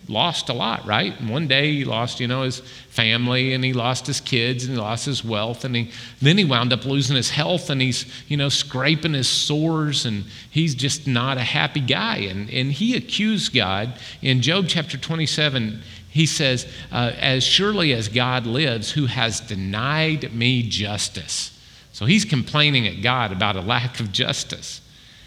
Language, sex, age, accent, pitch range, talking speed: English, male, 40-59, American, 120-160 Hz, 185 wpm